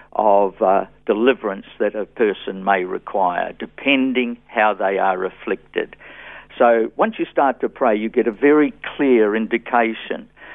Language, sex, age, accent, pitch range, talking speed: English, male, 50-69, Australian, 110-130 Hz, 140 wpm